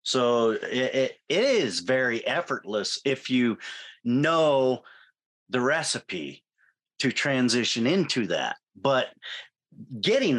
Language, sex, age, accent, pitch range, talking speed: English, male, 40-59, American, 110-135 Hz, 100 wpm